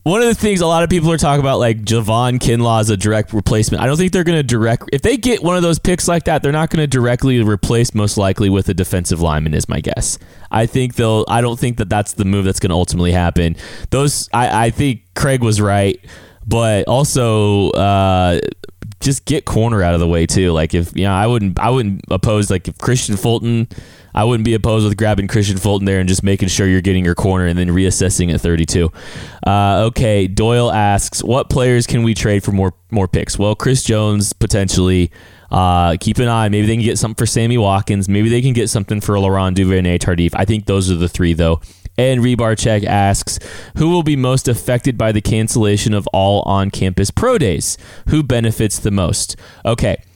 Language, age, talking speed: English, 20-39, 220 wpm